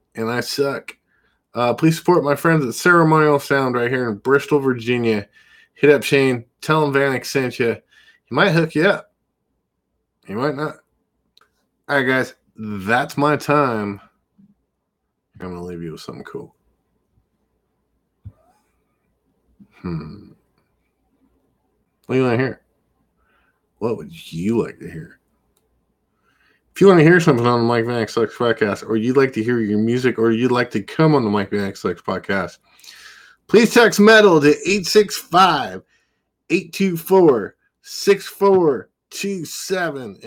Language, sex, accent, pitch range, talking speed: English, male, American, 110-160 Hz, 140 wpm